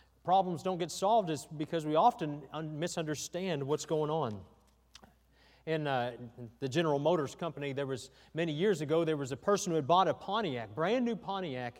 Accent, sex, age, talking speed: American, male, 40-59, 180 wpm